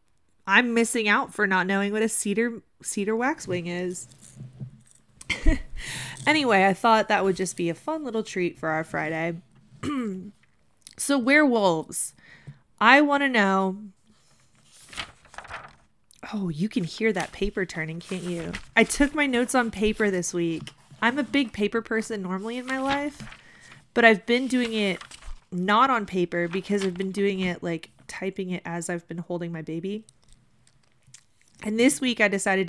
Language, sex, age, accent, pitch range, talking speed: English, female, 20-39, American, 175-225 Hz, 160 wpm